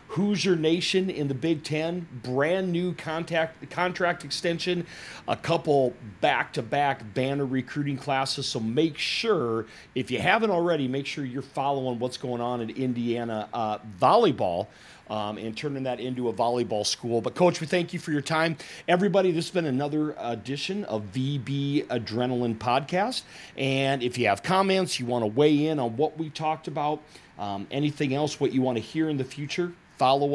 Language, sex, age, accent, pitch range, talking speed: English, male, 40-59, American, 120-165 Hz, 175 wpm